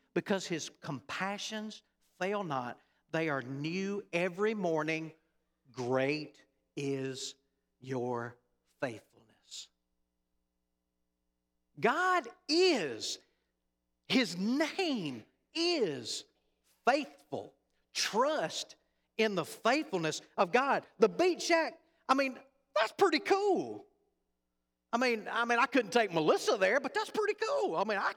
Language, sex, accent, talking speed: English, male, American, 105 wpm